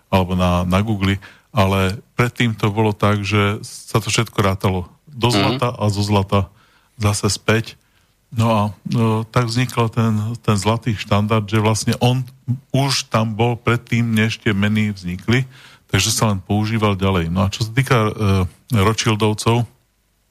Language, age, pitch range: Slovak, 40-59, 100-115 Hz